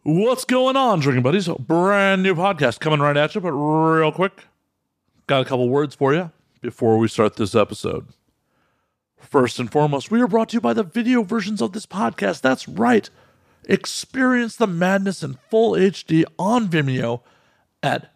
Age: 50-69